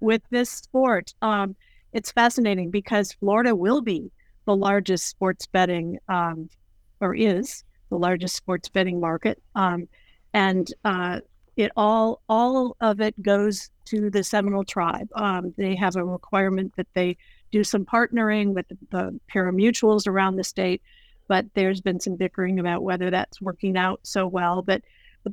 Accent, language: American, English